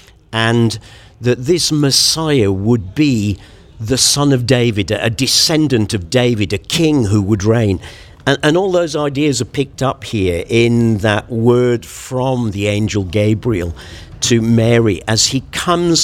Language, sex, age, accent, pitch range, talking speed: English, male, 50-69, British, 105-140 Hz, 150 wpm